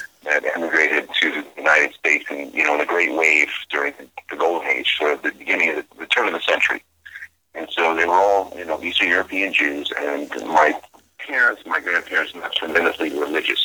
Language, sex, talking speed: English, male, 200 wpm